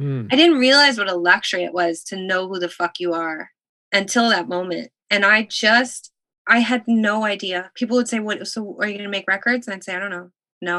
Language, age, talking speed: English, 20-39, 240 wpm